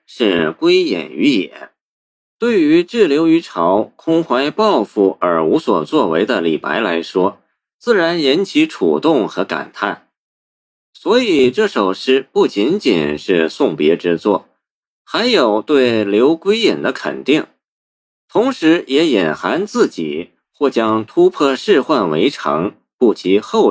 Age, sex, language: 50-69, male, Chinese